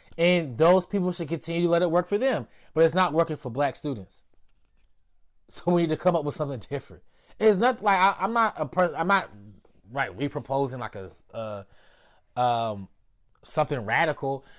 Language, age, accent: English, 20-39, American